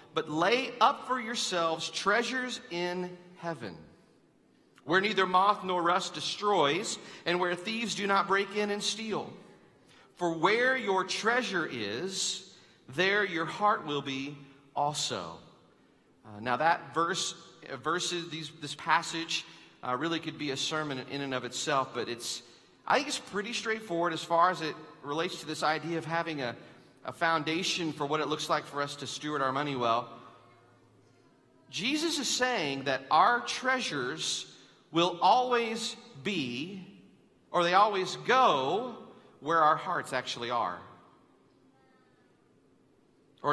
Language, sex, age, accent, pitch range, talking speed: English, male, 40-59, American, 150-200 Hz, 145 wpm